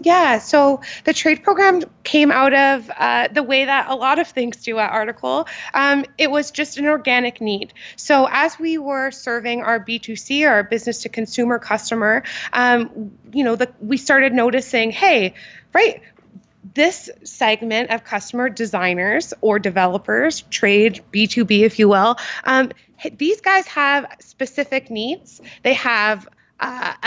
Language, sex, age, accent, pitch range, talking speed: English, female, 20-39, American, 220-275 Hz, 145 wpm